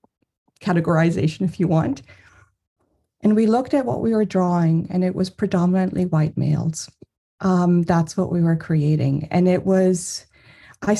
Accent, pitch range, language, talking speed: American, 160-195 Hz, English, 155 wpm